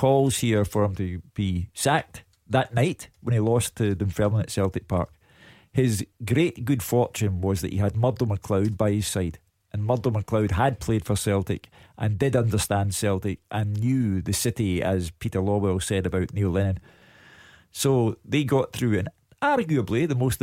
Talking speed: 180 wpm